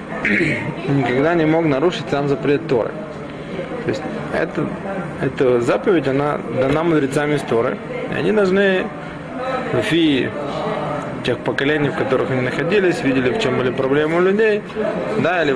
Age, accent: 20-39, native